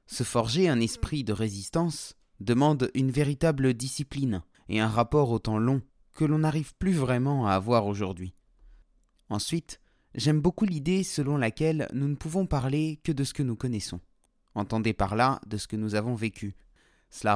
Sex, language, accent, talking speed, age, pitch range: male, French, French, 175 wpm, 30-49, 105-145 Hz